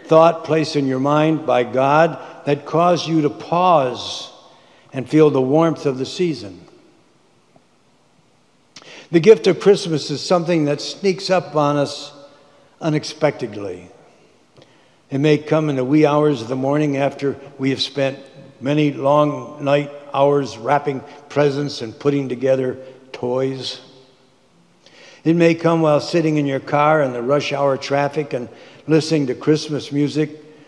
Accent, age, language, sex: American, 60-79, English, male